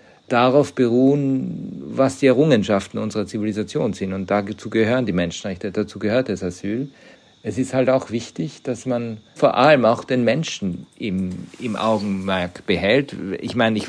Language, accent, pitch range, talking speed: German, German, 100-125 Hz, 155 wpm